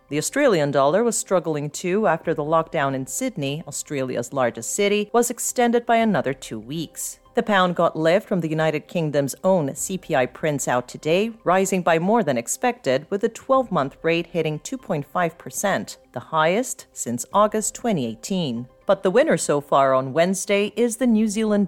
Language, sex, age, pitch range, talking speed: English, female, 40-59, 140-200 Hz, 165 wpm